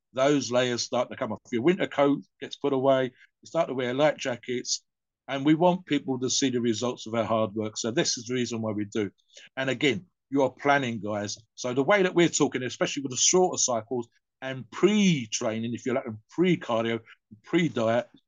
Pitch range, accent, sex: 120-145 Hz, British, male